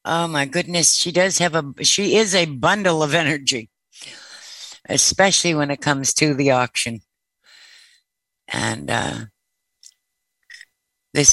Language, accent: English, American